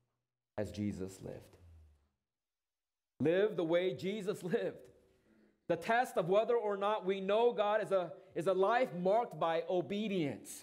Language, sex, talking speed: English, male, 140 wpm